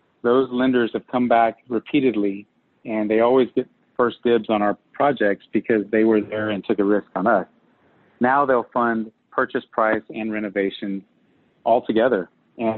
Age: 40-59